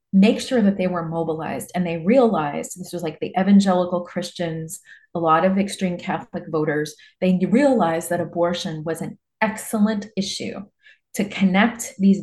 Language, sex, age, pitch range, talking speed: English, female, 30-49, 170-210 Hz, 155 wpm